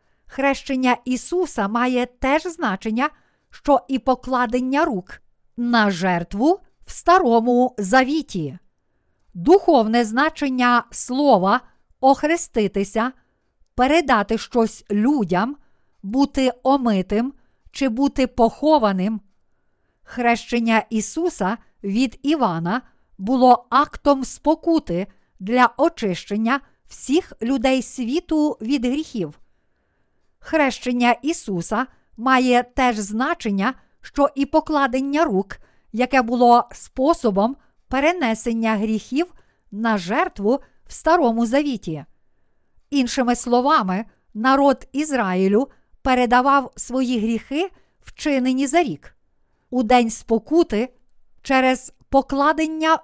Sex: female